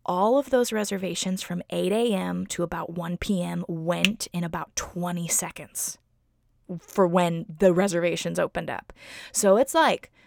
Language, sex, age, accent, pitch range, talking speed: English, female, 20-39, American, 170-205 Hz, 135 wpm